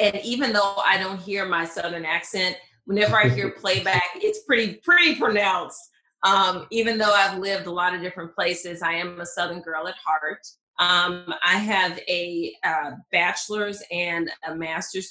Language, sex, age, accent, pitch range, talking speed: English, female, 30-49, American, 165-195 Hz, 170 wpm